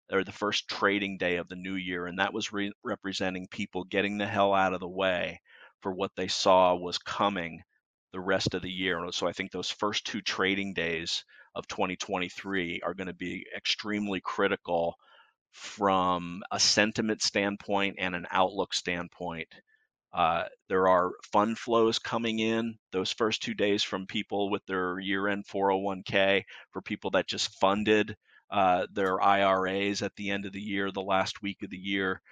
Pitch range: 90-100 Hz